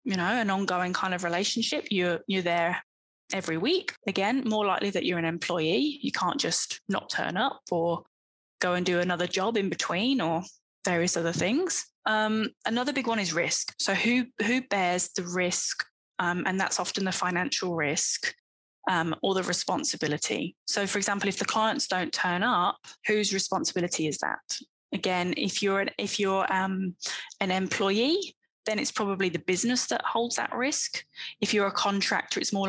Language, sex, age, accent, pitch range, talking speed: English, female, 10-29, British, 180-215 Hz, 180 wpm